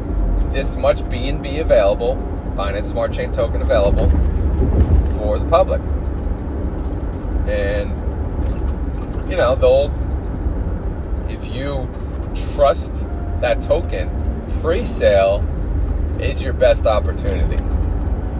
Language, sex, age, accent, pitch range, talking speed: English, male, 30-49, American, 75-90 Hz, 85 wpm